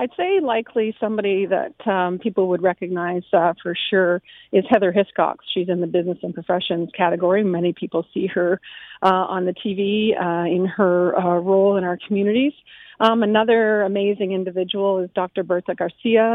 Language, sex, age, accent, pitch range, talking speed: English, female, 40-59, American, 185-220 Hz, 170 wpm